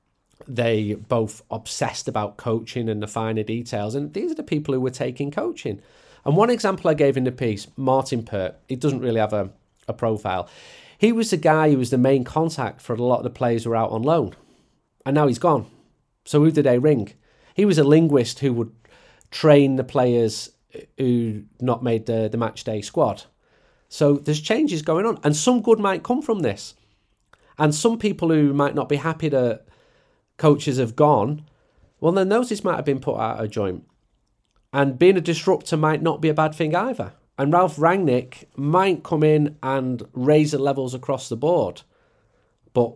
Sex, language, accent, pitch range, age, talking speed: male, English, British, 110-150 Hz, 30-49, 195 wpm